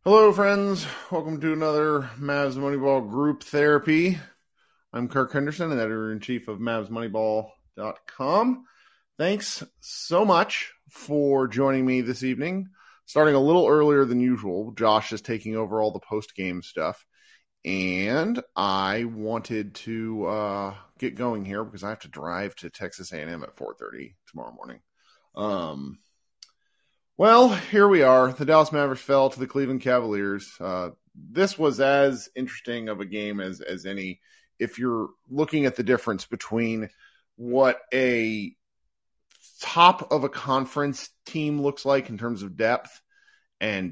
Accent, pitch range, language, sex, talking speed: American, 105-145 Hz, English, male, 140 wpm